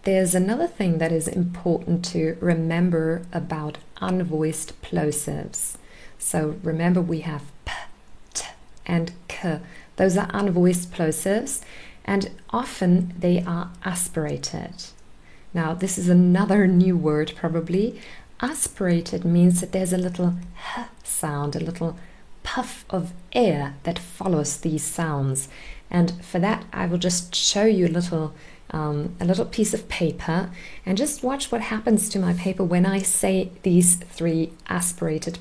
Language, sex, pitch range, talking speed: English, female, 160-185 Hz, 140 wpm